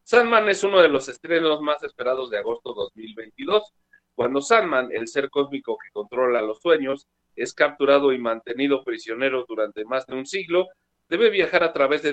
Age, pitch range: 50-69, 120-160 Hz